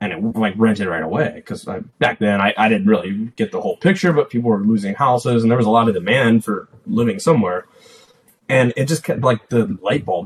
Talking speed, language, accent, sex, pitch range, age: 235 wpm, English, American, male, 105-135 Hz, 20-39